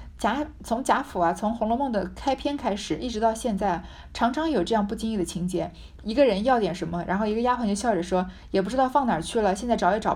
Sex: female